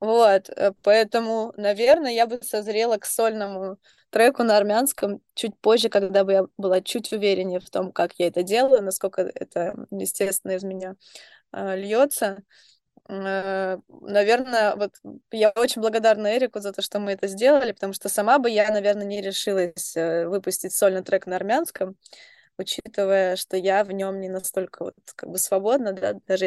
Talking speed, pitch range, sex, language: 155 wpm, 195-225 Hz, female, Russian